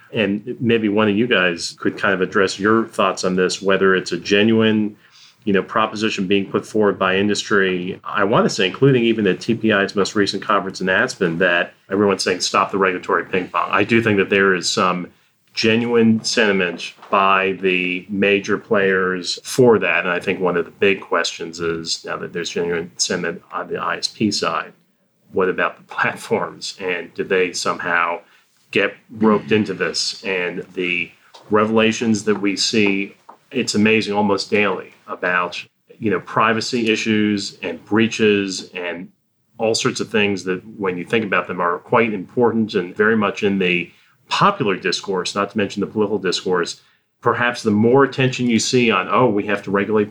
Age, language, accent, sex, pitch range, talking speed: 30-49, English, American, male, 95-110 Hz, 175 wpm